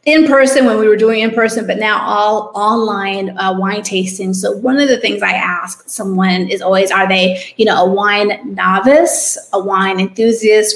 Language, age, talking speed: English, 30-49, 195 wpm